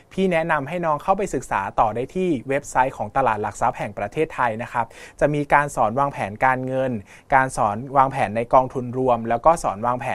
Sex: male